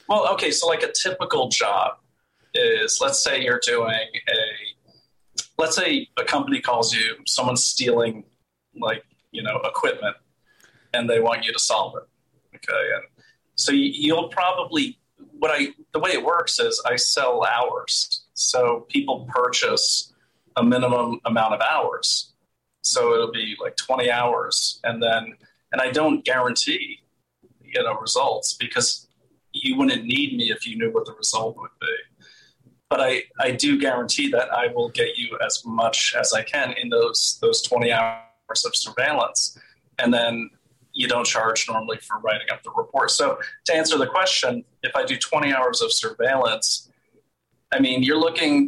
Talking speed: 165 wpm